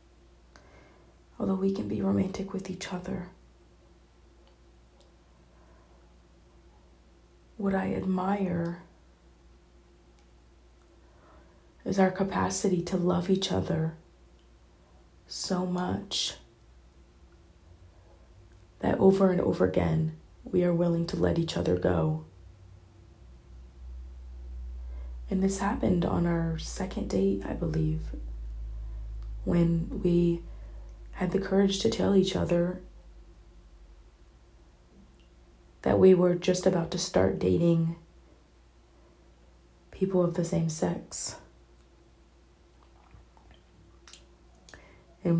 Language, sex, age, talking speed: English, female, 30-49, 85 wpm